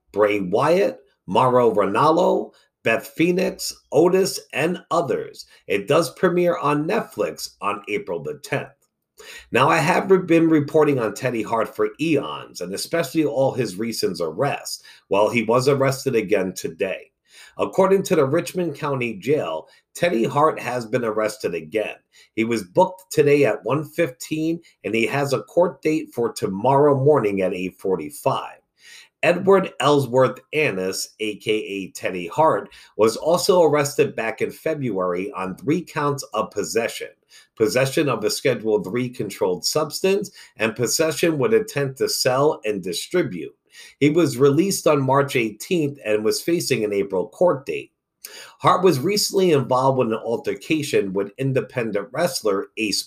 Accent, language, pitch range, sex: American, English, 115-180 Hz, male